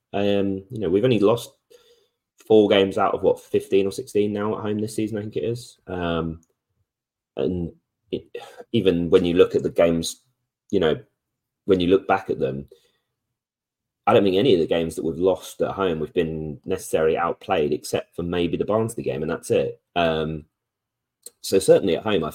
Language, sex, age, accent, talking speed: English, male, 30-49, British, 190 wpm